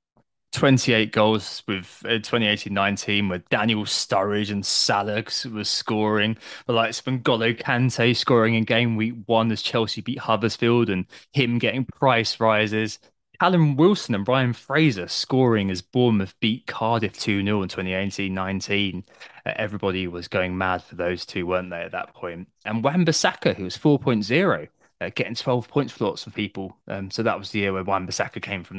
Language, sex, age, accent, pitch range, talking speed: English, male, 20-39, British, 95-120 Hz, 165 wpm